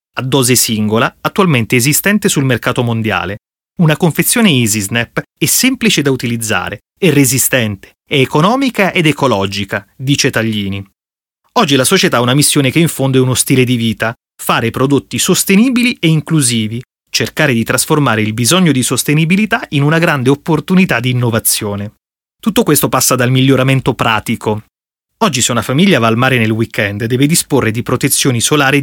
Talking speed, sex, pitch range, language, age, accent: 160 wpm, male, 115-160 Hz, Italian, 30-49, native